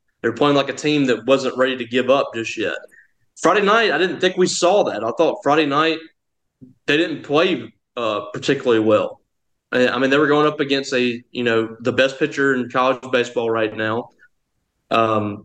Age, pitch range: 20-39, 120-150 Hz